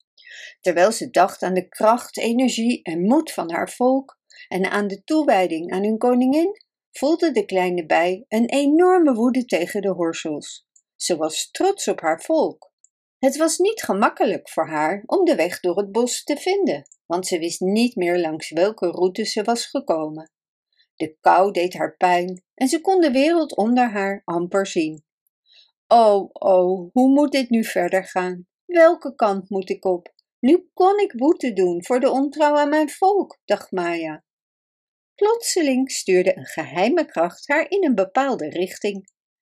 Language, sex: Dutch, female